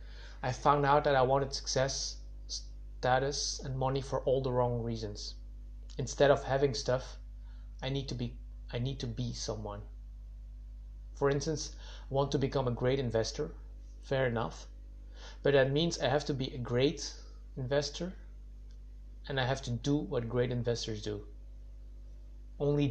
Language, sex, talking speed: English, male, 155 wpm